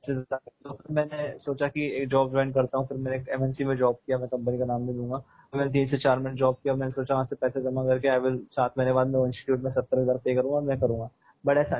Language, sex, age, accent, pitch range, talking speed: Hindi, male, 20-39, native, 130-140 Hz, 75 wpm